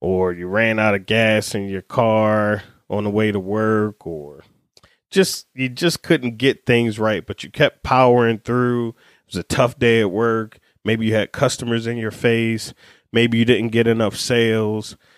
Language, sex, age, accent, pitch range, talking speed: English, male, 20-39, American, 110-130 Hz, 185 wpm